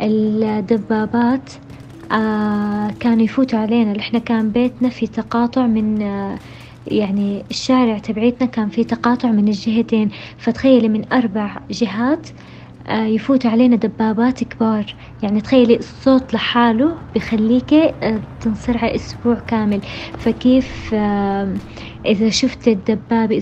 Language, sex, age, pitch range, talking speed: Arabic, female, 20-39, 215-240 Hz, 95 wpm